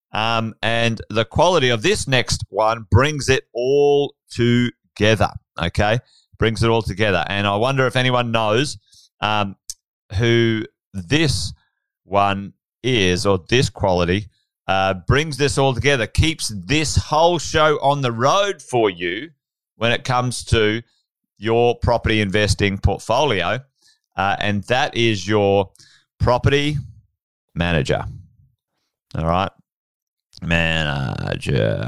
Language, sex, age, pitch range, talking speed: English, male, 30-49, 105-140 Hz, 120 wpm